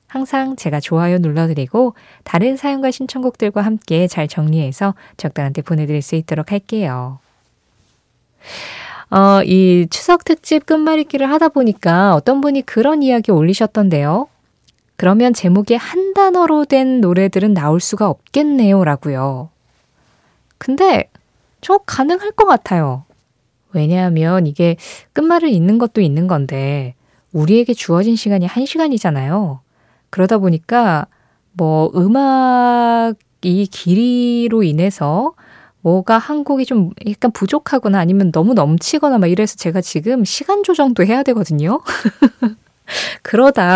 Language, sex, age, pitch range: Korean, female, 20-39, 175-265 Hz